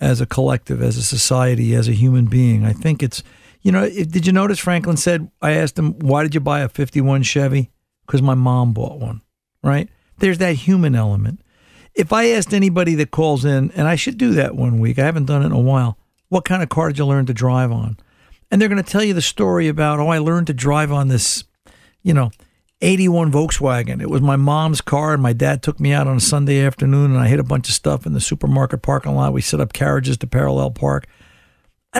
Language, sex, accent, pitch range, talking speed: English, male, American, 120-170 Hz, 235 wpm